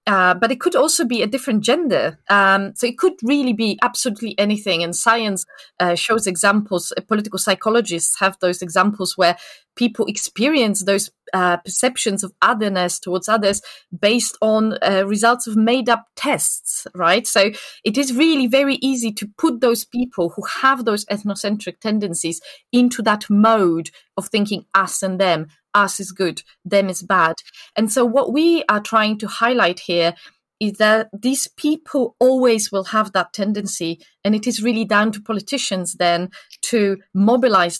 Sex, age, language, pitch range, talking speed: female, 30-49, English, 185-230 Hz, 160 wpm